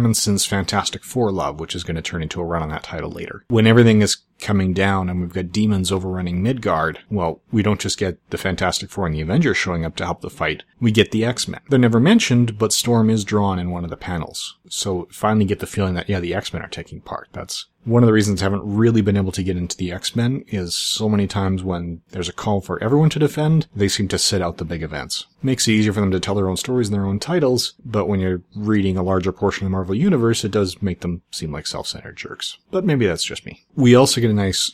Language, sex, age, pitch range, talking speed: English, male, 30-49, 90-115 Hz, 260 wpm